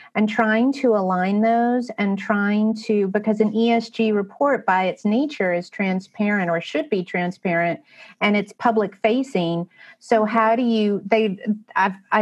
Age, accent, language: 40-59, American, English